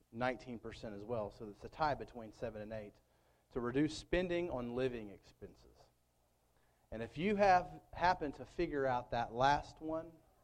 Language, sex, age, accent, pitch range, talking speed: English, male, 40-59, American, 115-155 Hz, 160 wpm